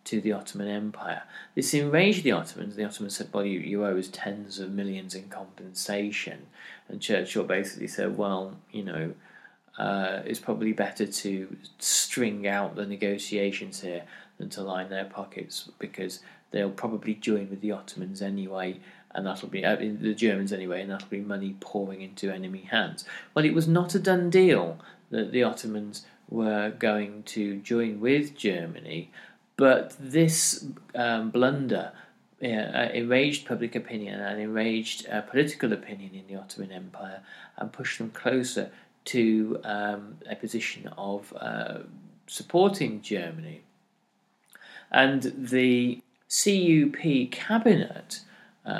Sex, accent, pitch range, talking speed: male, British, 100-130 Hz, 140 wpm